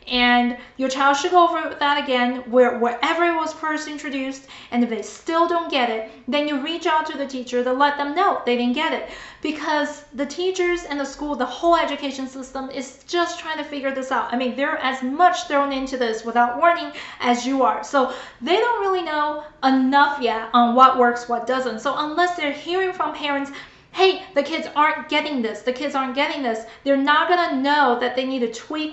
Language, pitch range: English, 250-320 Hz